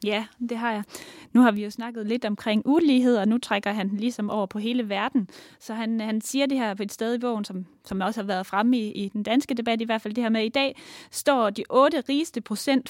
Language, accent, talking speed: Danish, native, 260 wpm